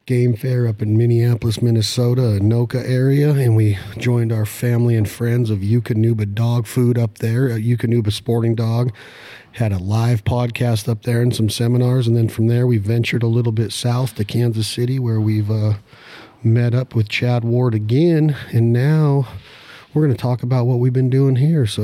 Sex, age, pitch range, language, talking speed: male, 40-59, 105-120 Hz, English, 190 wpm